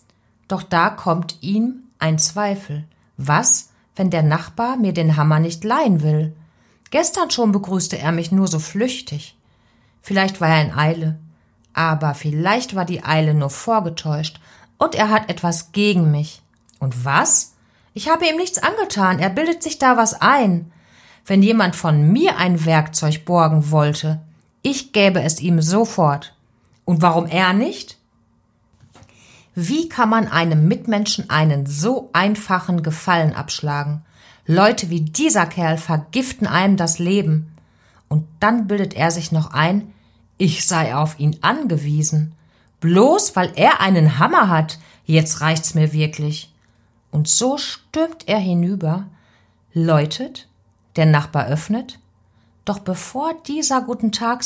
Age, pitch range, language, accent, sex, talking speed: 30-49, 155-205 Hz, German, German, female, 140 wpm